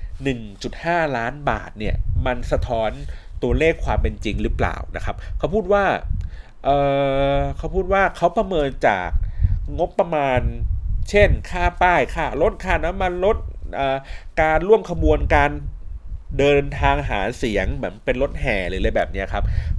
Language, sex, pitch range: Thai, male, 90-140 Hz